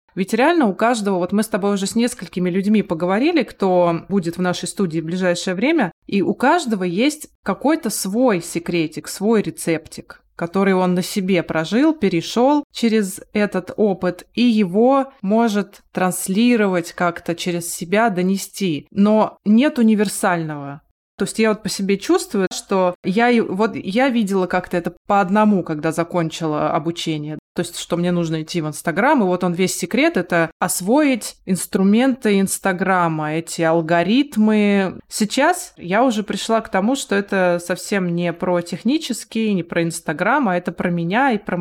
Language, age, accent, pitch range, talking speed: Russian, 20-39, native, 175-220 Hz, 155 wpm